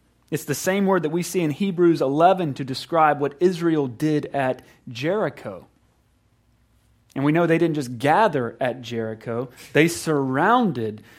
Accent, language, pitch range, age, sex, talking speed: American, English, 130-180 Hz, 30-49, male, 150 wpm